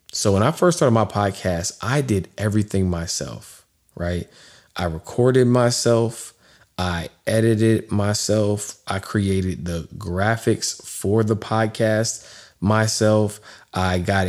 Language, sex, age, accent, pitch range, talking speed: English, male, 20-39, American, 90-110 Hz, 120 wpm